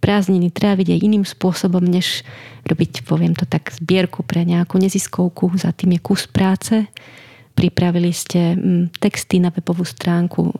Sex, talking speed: female, 135 wpm